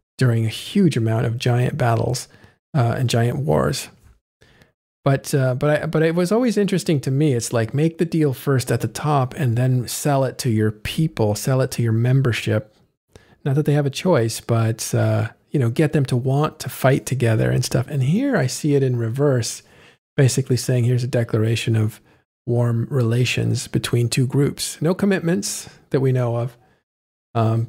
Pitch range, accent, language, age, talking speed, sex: 115-145 Hz, American, English, 40-59, 185 wpm, male